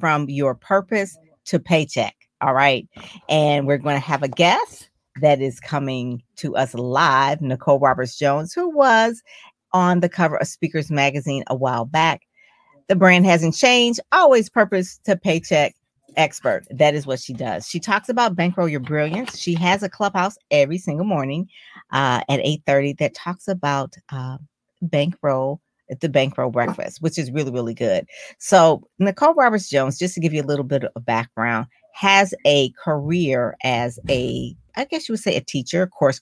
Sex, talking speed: female, 170 wpm